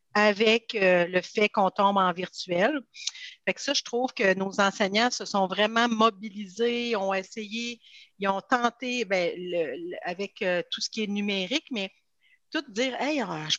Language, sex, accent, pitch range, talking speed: French, female, Canadian, 200-235 Hz, 175 wpm